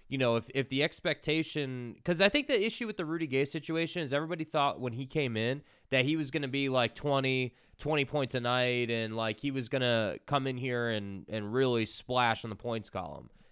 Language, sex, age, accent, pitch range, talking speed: English, male, 20-39, American, 115-145 Hz, 230 wpm